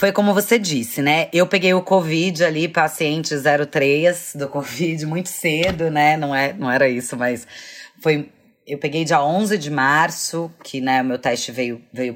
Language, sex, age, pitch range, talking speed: Portuguese, female, 20-39, 150-195 Hz, 185 wpm